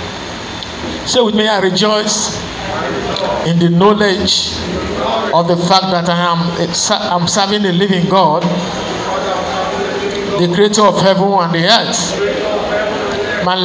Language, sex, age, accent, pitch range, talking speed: English, male, 50-69, Nigerian, 175-210 Hz, 120 wpm